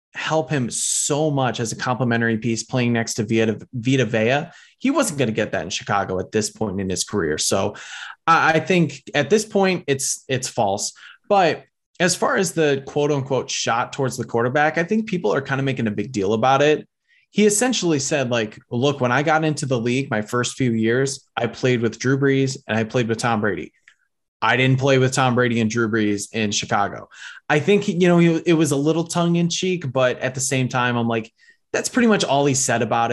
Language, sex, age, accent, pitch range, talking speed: English, male, 20-39, American, 115-150 Hz, 220 wpm